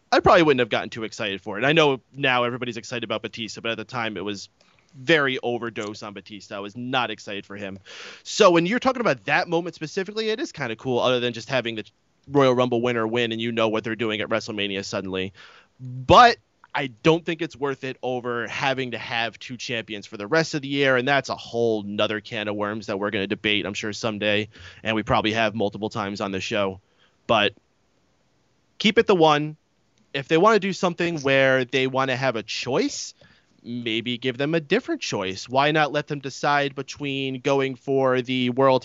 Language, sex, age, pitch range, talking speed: English, male, 30-49, 110-140 Hz, 220 wpm